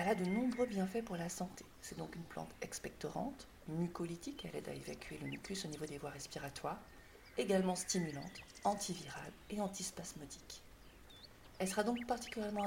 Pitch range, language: 155-205 Hz, French